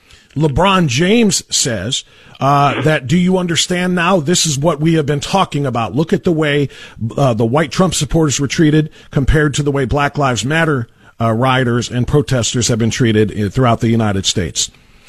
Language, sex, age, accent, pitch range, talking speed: English, male, 50-69, American, 125-175 Hz, 185 wpm